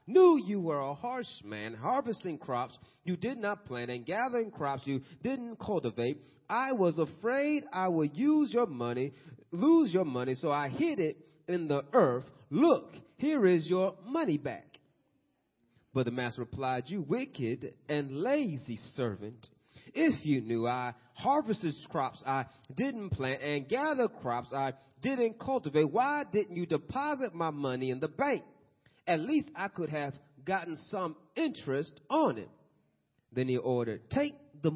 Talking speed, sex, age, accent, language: 155 wpm, male, 30-49, American, English